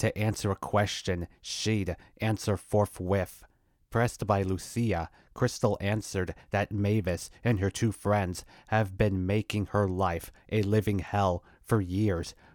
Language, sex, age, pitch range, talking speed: English, male, 30-49, 90-105 Hz, 135 wpm